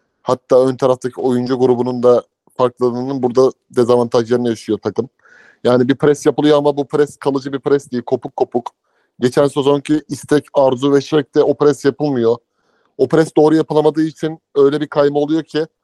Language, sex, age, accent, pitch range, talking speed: Turkish, male, 30-49, native, 130-150 Hz, 165 wpm